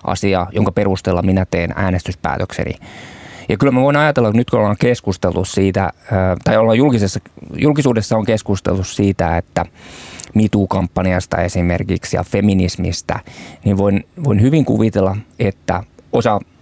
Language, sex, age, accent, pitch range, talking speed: Finnish, male, 20-39, native, 90-110 Hz, 125 wpm